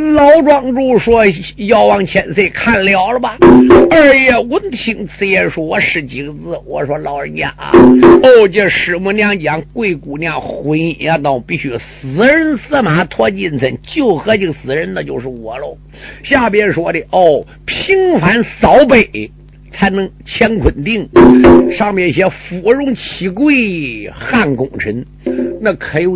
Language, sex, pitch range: Chinese, male, 130-210 Hz